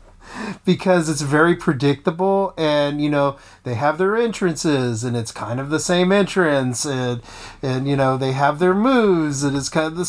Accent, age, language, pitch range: American, 30-49, English, 125-170 Hz